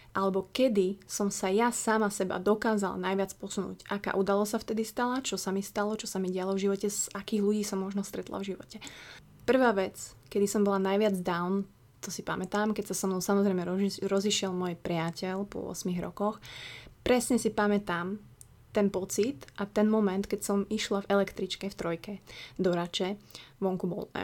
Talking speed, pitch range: 180 wpm, 190-215 Hz